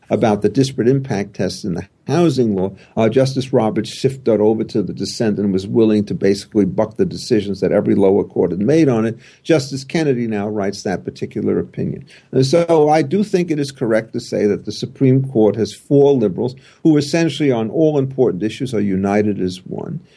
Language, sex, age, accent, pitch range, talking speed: English, male, 50-69, American, 105-135 Hz, 200 wpm